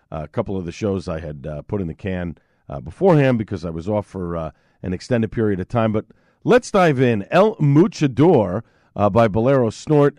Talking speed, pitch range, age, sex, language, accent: 210 wpm, 95-135 Hz, 50-69, male, English, American